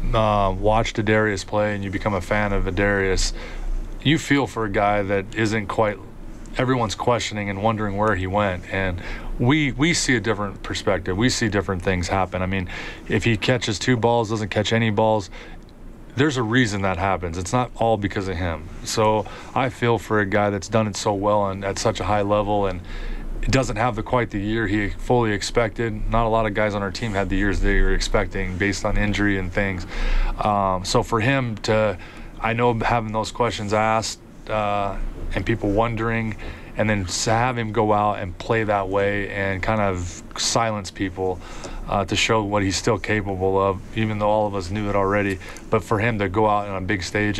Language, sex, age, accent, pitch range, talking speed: English, male, 30-49, American, 95-110 Hz, 205 wpm